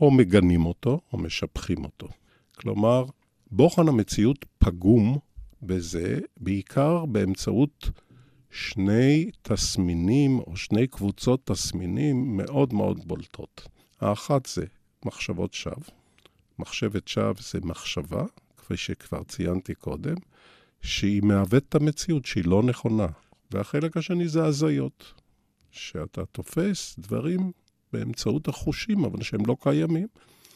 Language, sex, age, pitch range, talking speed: Hebrew, male, 50-69, 95-140 Hz, 105 wpm